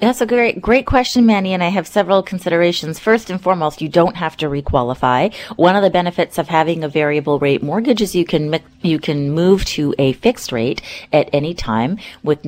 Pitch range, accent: 140-175 Hz, American